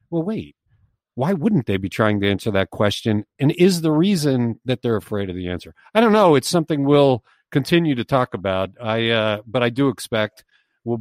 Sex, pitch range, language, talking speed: male, 110-150 Hz, English, 205 wpm